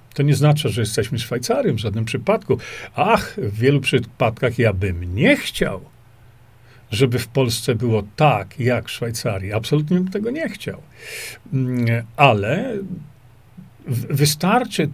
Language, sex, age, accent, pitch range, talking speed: Polish, male, 50-69, native, 120-150 Hz, 130 wpm